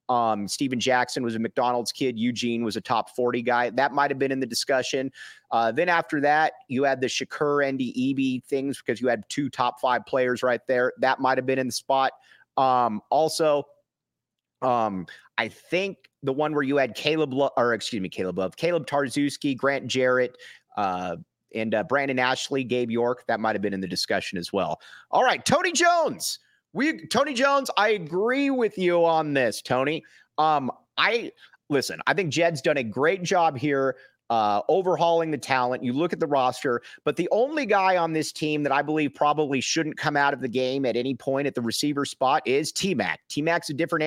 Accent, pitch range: American, 130-170 Hz